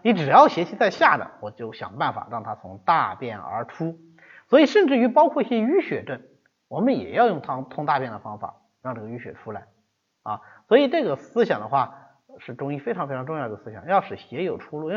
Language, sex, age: Chinese, male, 30-49